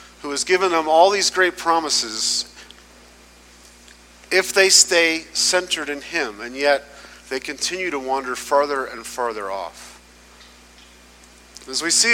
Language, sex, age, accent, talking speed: English, male, 40-59, American, 135 wpm